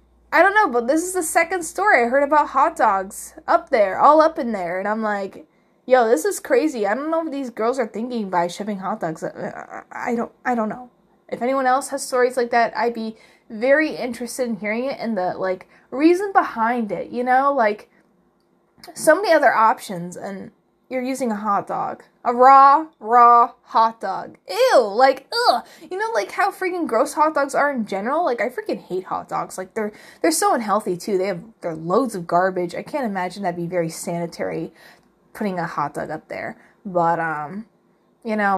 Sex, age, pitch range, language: female, 10-29, 190-275 Hz, English